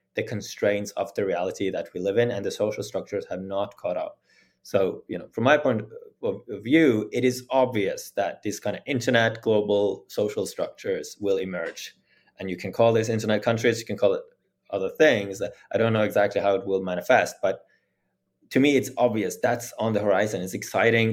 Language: English